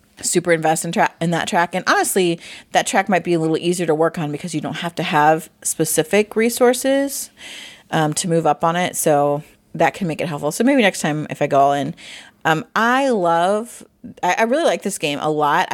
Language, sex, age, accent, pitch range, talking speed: English, female, 30-49, American, 155-195 Hz, 220 wpm